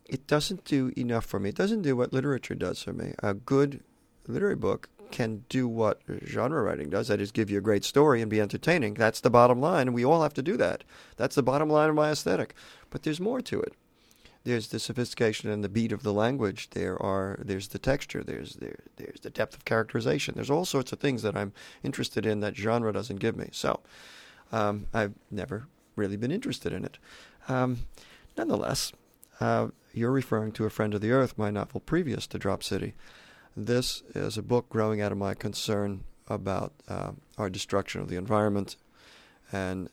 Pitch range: 100-125 Hz